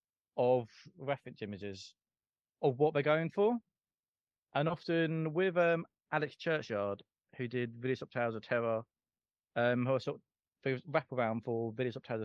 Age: 30-49